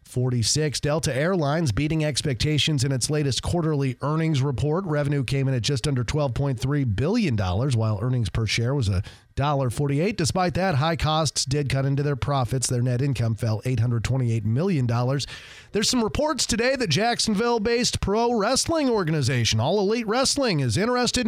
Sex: male